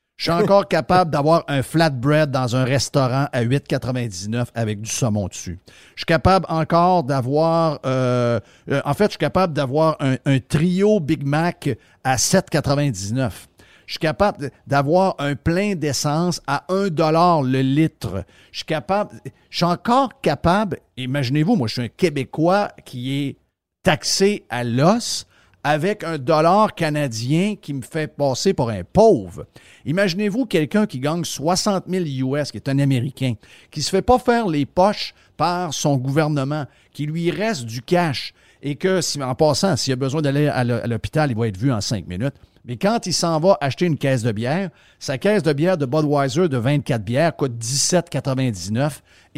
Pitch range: 130-170 Hz